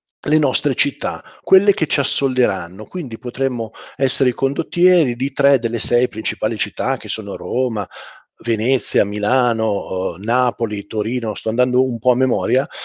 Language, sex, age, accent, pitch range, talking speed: Italian, male, 50-69, native, 120-170 Hz, 145 wpm